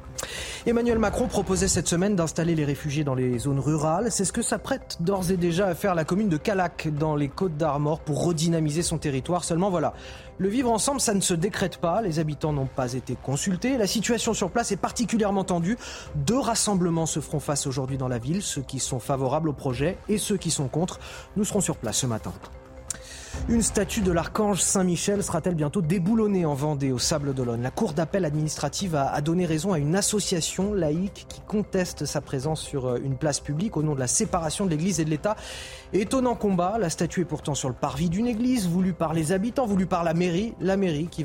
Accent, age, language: French, 30-49, French